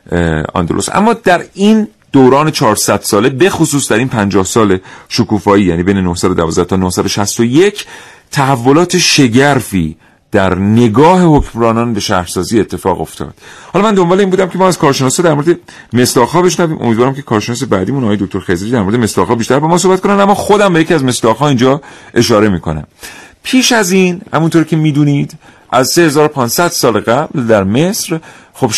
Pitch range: 105-165 Hz